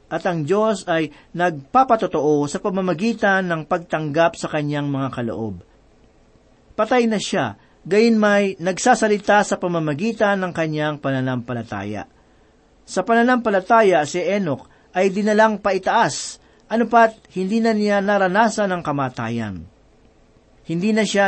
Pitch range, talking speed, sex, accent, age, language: 155-210 Hz, 115 wpm, male, native, 40-59, Filipino